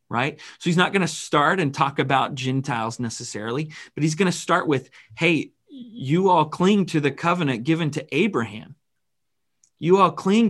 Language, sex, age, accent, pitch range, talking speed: English, male, 30-49, American, 125-160 Hz, 175 wpm